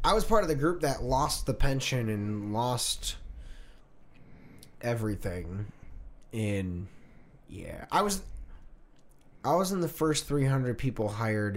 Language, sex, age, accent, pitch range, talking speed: English, male, 20-39, American, 90-120 Hz, 130 wpm